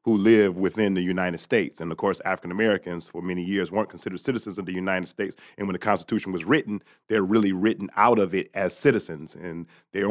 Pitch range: 100-125 Hz